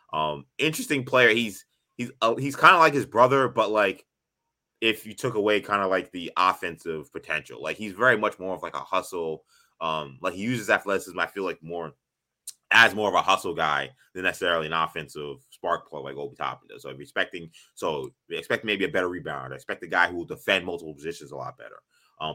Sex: male